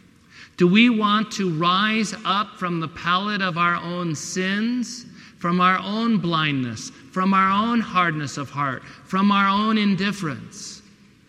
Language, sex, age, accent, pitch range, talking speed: English, male, 50-69, American, 135-190 Hz, 145 wpm